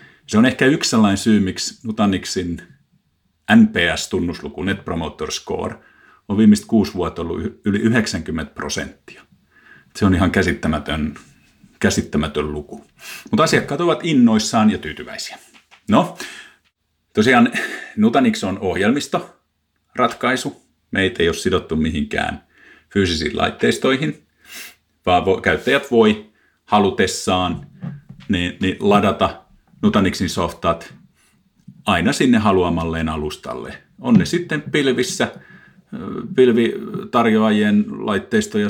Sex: male